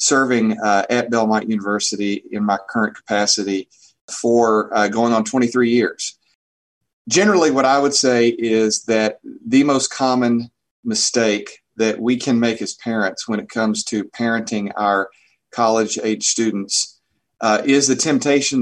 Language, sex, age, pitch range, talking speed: English, male, 40-59, 110-125 Hz, 145 wpm